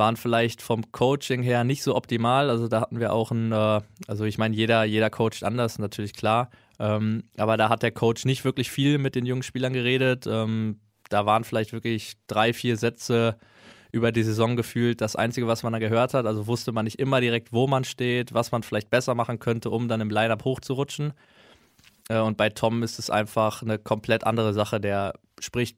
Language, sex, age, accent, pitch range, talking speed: German, male, 20-39, German, 110-120 Hz, 200 wpm